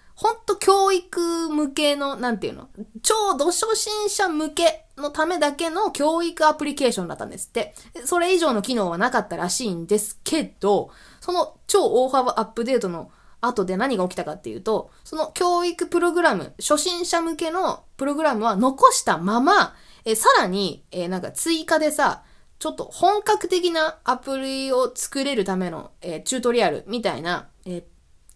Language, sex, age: Japanese, female, 20-39